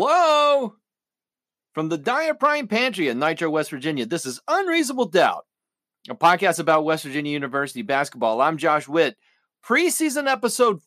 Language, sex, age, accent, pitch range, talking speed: English, male, 40-59, American, 155-240 Hz, 145 wpm